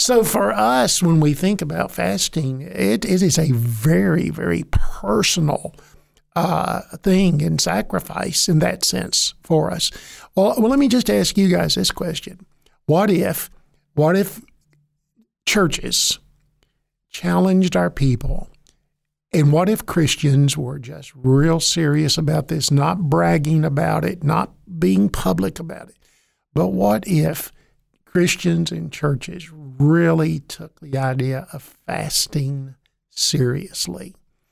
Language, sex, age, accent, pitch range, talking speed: English, male, 50-69, American, 140-175 Hz, 125 wpm